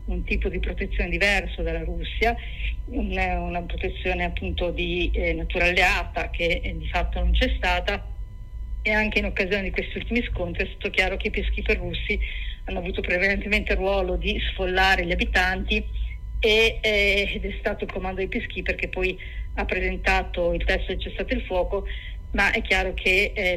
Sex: female